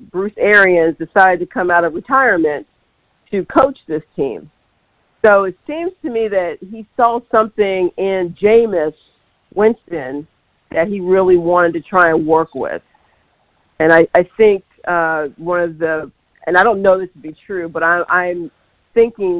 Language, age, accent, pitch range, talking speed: English, 50-69, American, 165-190 Hz, 160 wpm